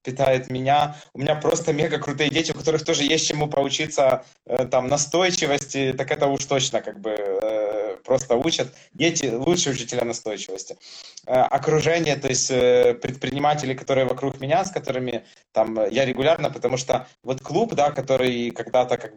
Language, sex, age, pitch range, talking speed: Russian, male, 20-39, 125-150 Hz, 160 wpm